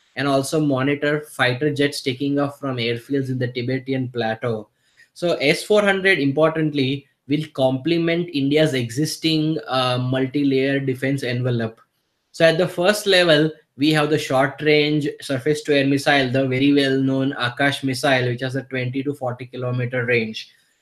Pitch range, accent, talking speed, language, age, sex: 130-150 Hz, Indian, 150 wpm, English, 20-39, male